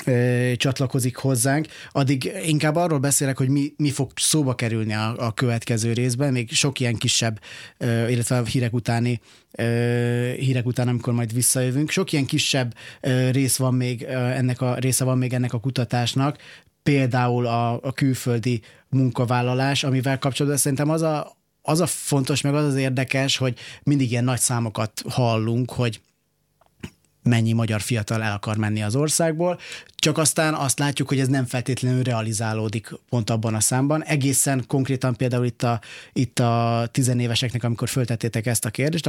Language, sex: Hungarian, male